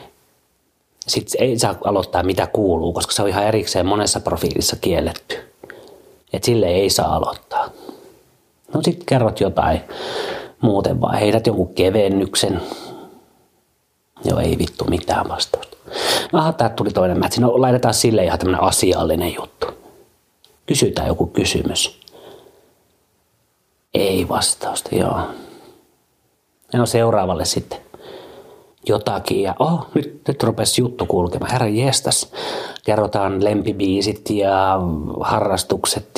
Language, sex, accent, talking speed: Finnish, male, native, 110 wpm